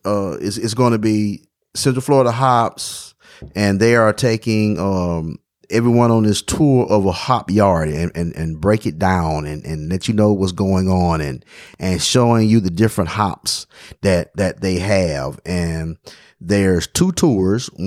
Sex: male